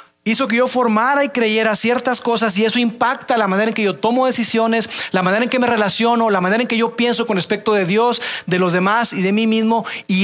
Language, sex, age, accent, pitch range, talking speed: Spanish, male, 30-49, Mexican, 155-225 Hz, 245 wpm